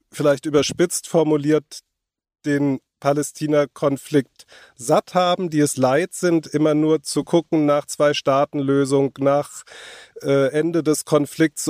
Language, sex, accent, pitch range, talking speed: German, male, German, 135-150 Hz, 120 wpm